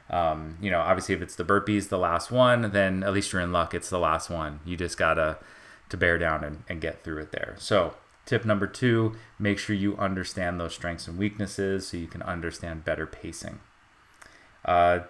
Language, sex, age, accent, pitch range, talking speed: English, male, 30-49, American, 85-105 Hz, 205 wpm